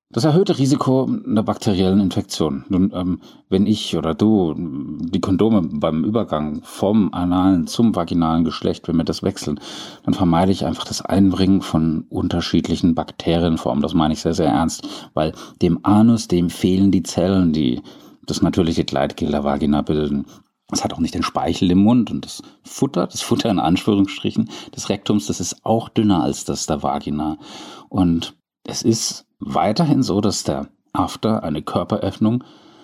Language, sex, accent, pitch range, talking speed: German, male, German, 85-110 Hz, 165 wpm